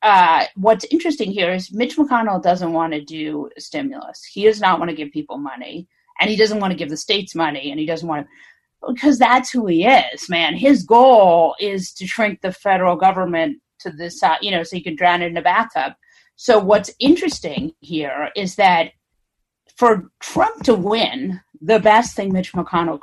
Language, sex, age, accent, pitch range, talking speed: English, female, 40-59, American, 170-230 Hz, 200 wpm